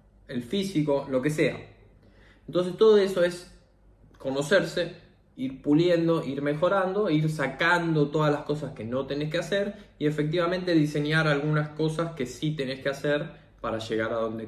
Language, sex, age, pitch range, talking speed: Spanish, male, 20-39, 115-155 Hz, 160 wpm